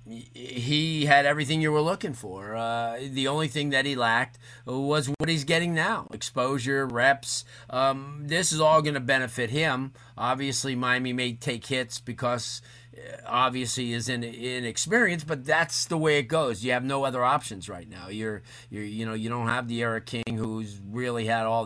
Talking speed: 185 wpm